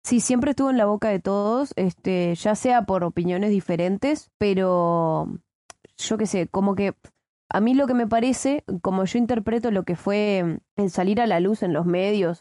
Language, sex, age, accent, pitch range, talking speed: Spanish, female, 20-39, Argentinian, 180-225 Hz, 195 wpm